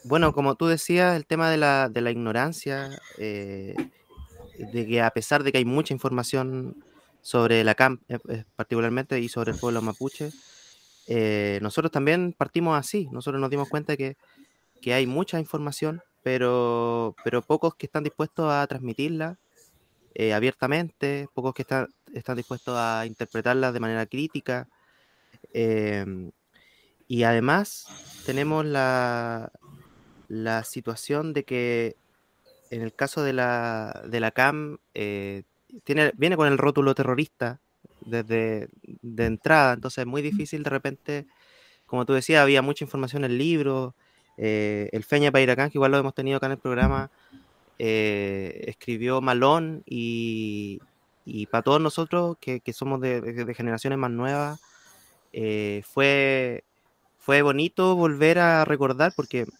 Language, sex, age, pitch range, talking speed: Spanish, male, 20-39, 115-145 Hz, 150 wpm